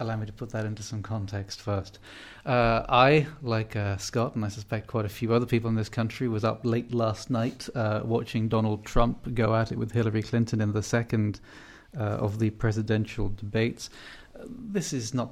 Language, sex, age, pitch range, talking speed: English, male, 30-49, 105-120 Hz, 200 wpm